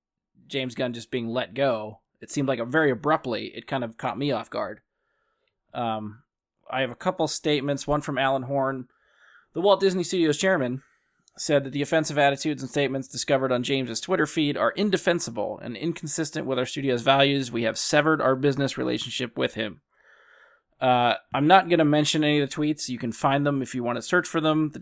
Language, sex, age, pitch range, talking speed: English, male, 20-39, 120-150 Hz, 205 wpm